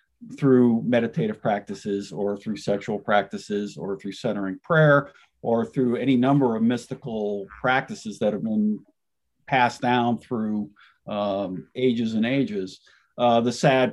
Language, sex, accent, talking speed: English, male, American, 135 wpm